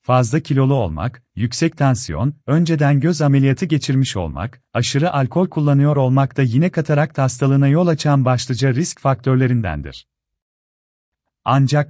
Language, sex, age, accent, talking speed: Turkish, male, 40-59, native, 120 wpm